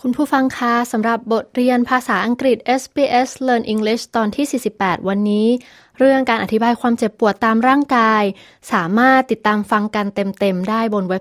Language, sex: Thai, female